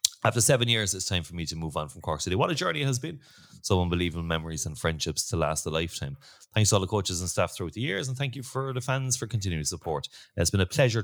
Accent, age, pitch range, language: Irish, 30-49, 90-130 Hz, English